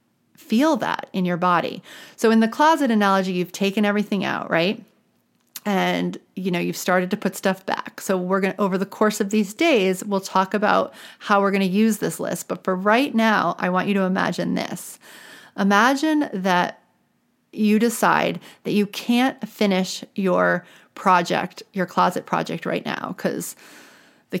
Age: 30-49